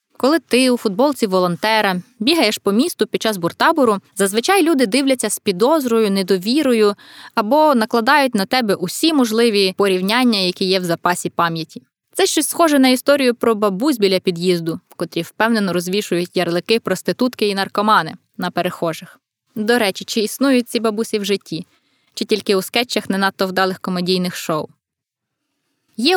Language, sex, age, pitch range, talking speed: Ukrainian, female, 20-39, 195-245 Hz, 150 wpm